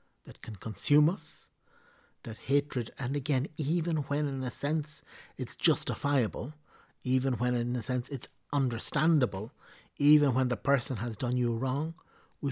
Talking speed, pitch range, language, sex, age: 150 wpm, 120-140 Hz, English, male, 60-79